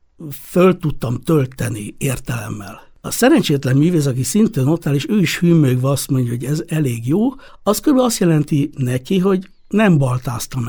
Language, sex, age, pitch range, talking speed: Hungarian, male, 60-79, 125-175 Hz, 165 wpm